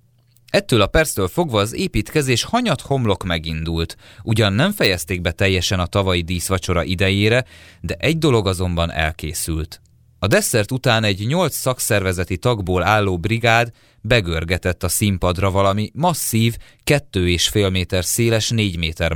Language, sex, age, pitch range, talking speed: Hungarian, male, 30-49, 90-120 Hz, 140 wpm